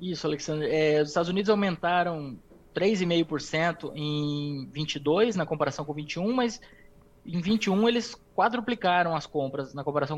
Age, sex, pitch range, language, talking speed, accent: 20-39, male, 145-195 Hz, Portuguese, 135 wpm, Brazilian